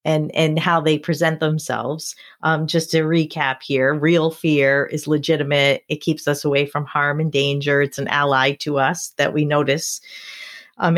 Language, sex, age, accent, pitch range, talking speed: English, female, 40-59, American, 145-180 Hz, 175 wpm